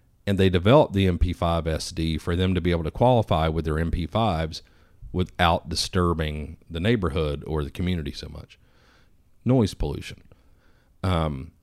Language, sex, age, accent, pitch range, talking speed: English, male, 40-59, American, 80-100 Hz, 140 wpm